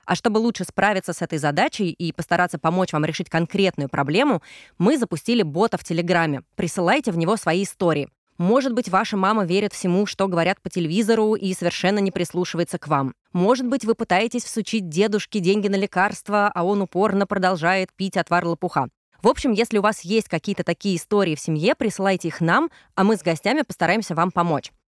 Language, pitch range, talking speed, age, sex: Russian, 175-215 Hz, 185 wpm, 20-39, female